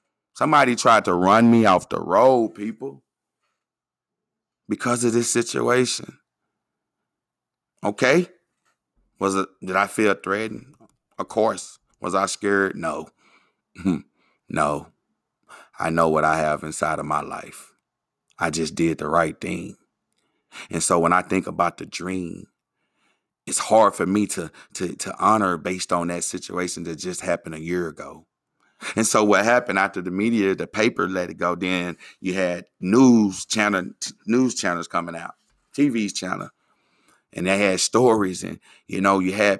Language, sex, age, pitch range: English, male, 30-49, 85-110 Hz